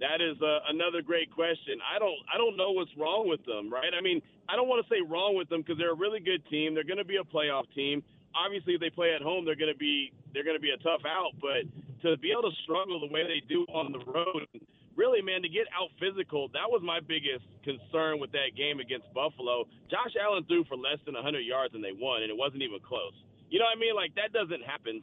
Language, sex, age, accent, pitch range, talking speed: English, male, 30-49, American, 140-175 Hz, 265 wpm